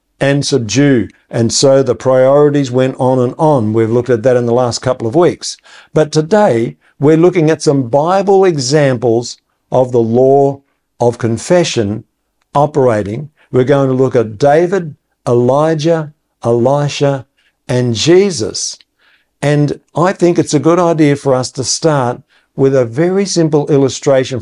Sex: male